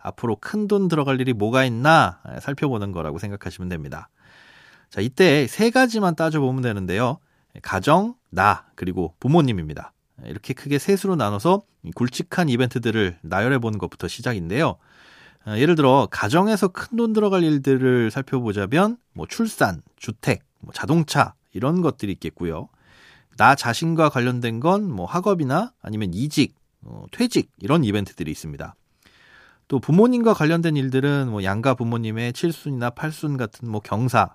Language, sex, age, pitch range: Korean, male, 40-59, 110-160 Hz